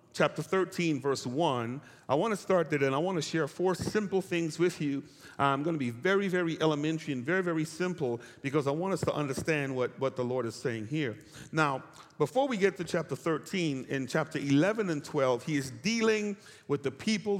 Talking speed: 210 wpm